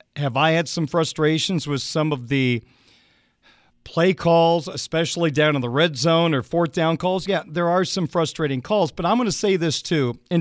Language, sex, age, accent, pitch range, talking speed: English, male, 40-59, American, 140-175 Hz, 200 wpm